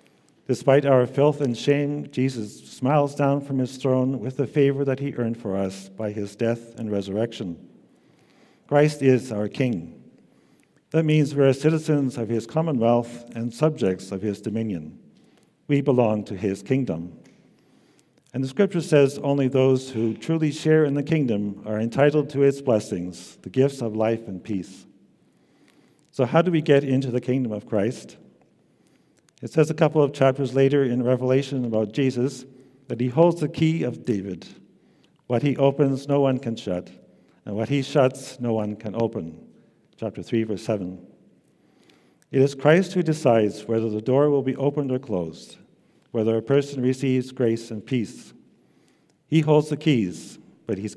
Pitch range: 110-140 Hz